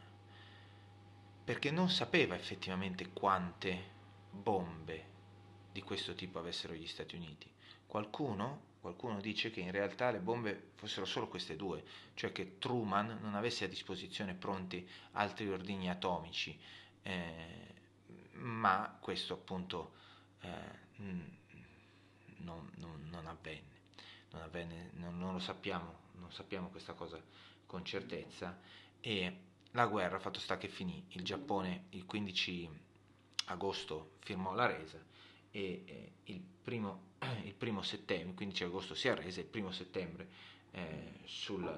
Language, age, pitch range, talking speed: Italian, 30-49, 90-100 Hz, 125 wpm